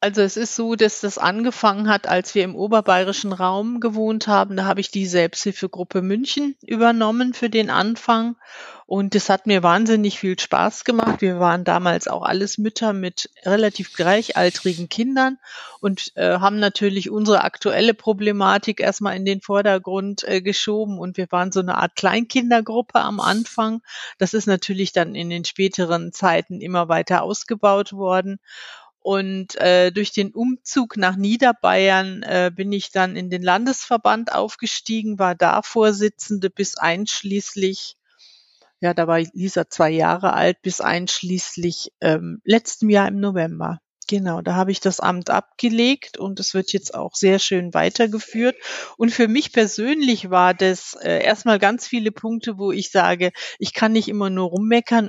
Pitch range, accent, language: 185-220 Hz, German, German